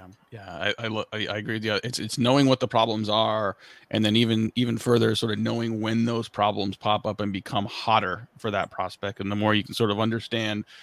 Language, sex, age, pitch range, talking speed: English, male, 30-49, 115-135 Hz, 220 wpm